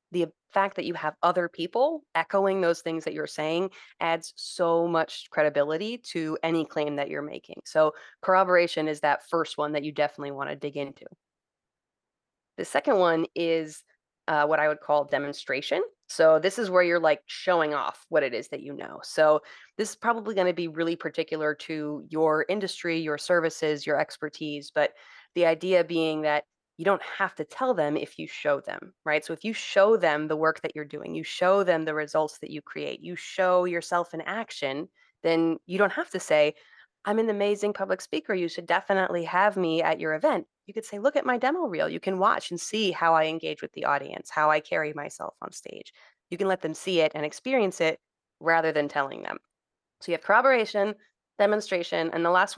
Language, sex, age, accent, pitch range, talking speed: English, female, 20-39, American, 155-195 Hz, 205 wpm